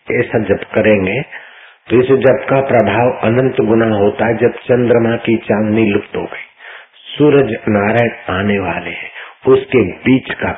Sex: male